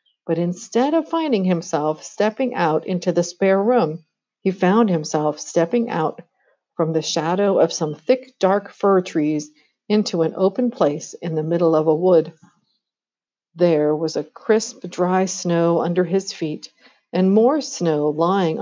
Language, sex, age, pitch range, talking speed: English, female, 50-69, 165-220 Hz, 155 wpm